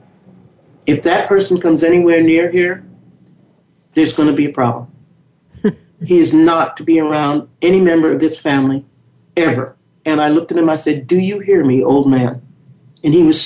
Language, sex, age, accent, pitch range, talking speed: English, male, 60-79, American, 145-185 Hz, 185 wpm